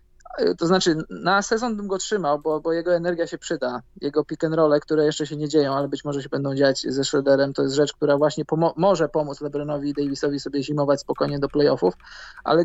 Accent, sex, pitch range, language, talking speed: native, male, 145-180 Hz, Polish, 225 wpm